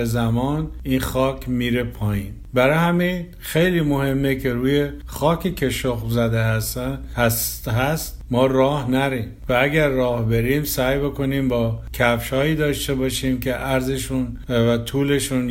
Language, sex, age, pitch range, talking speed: Persian, male, 50-69, 120-140 Hz, 135 wpm